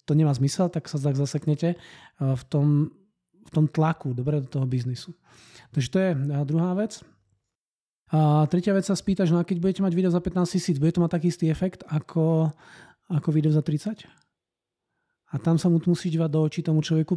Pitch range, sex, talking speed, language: 145-170 Hz, male, 195 wpm, Czech